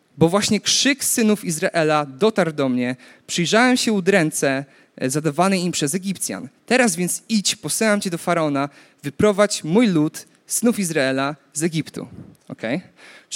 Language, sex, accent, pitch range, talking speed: Polish, male, native, 145-205 Hz, 135 wpm